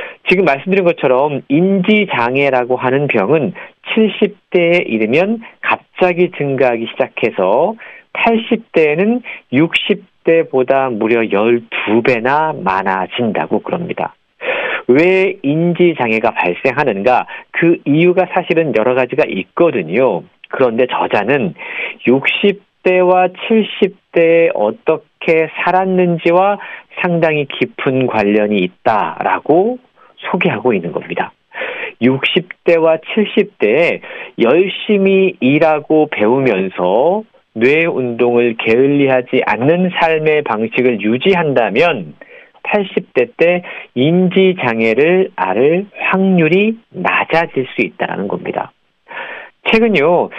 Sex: male